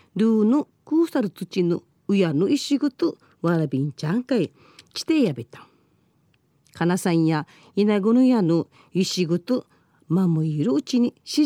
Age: 40-59